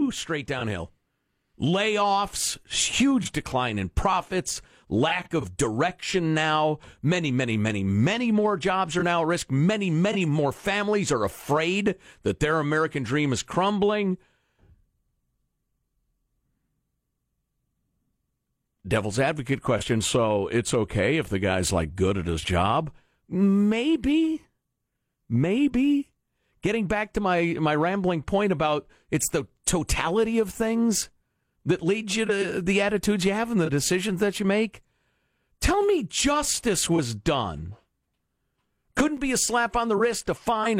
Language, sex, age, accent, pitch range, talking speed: English, male, 50-69, American, 130-210 Hz, 130 wpm